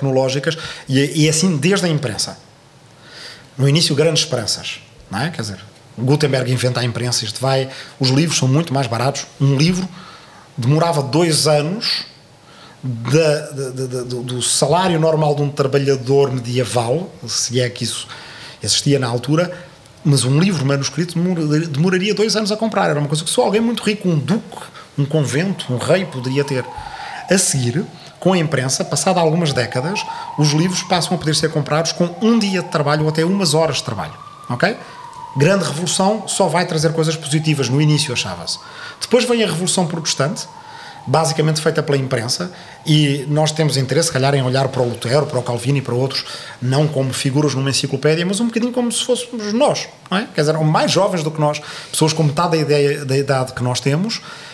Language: Portuguese